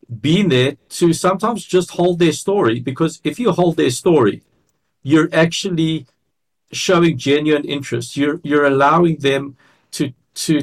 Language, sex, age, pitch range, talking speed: English, male, 50-69, 135-170 Hz, 140 wpm